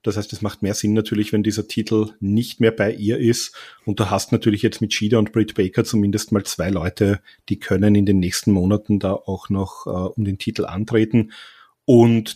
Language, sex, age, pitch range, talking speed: German, male, 30-49, 95-110 Hz, 215 wpm